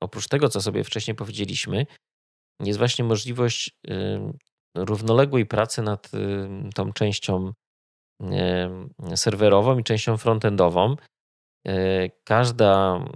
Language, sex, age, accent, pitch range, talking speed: Polish, male, 20-39, native, 95-115 Hz, 85 wpm